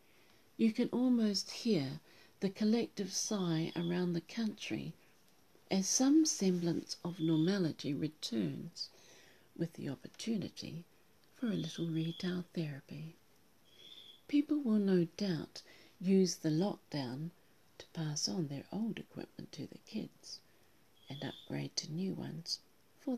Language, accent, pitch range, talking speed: English, British, 160-200 Hz, 120 wpm